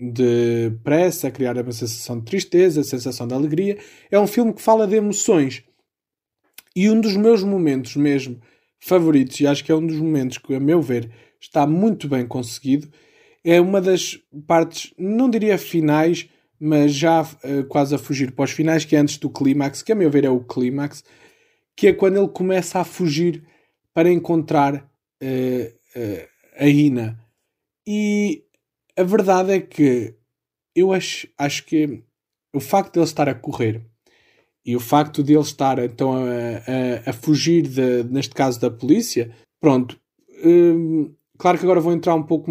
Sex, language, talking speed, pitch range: male, Portuguese, 165 wpm, 135-185 Hz